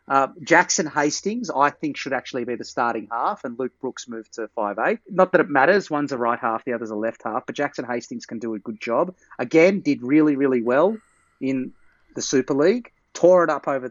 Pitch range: 125-165 Hz